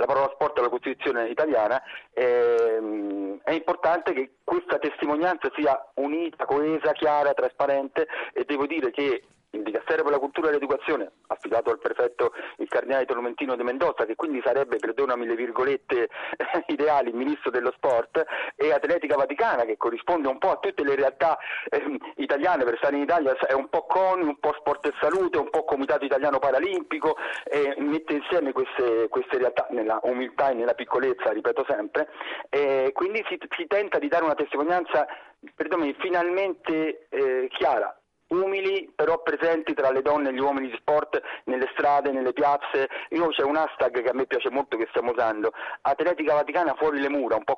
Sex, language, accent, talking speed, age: male, Italian, native, 175 wpm, 40-59